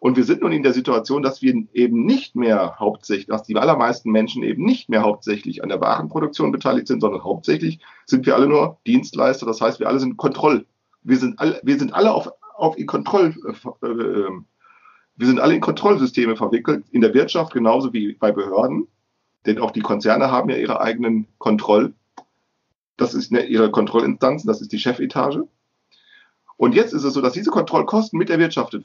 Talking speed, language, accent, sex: 190 wpm, German, German, male